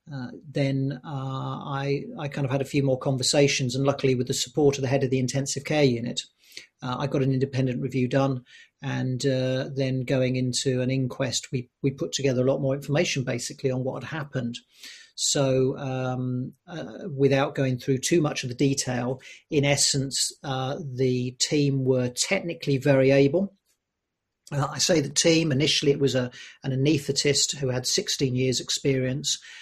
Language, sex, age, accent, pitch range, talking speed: English, male, 40-59, British, 130-145 Hz, 175 wpm